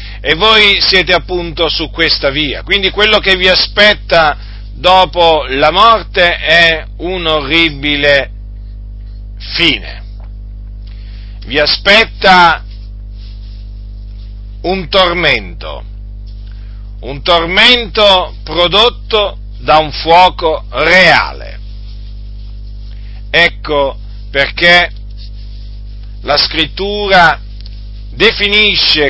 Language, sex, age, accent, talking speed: Italian, male, 50-69, native, 70 wpm